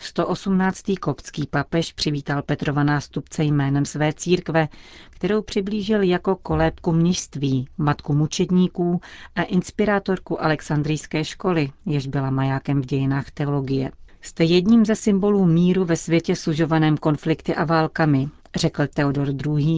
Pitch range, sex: 145-170 Hz, female